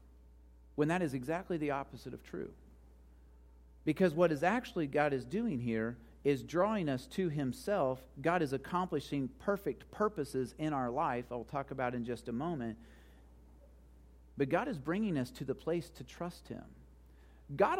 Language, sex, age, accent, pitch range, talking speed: English, male, 40-59, American, 115-180 Hz, 165 wpm